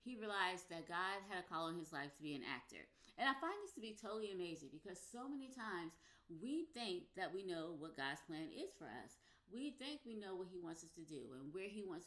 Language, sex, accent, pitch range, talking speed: English, female, American, 165-230 Hz, 255 wpm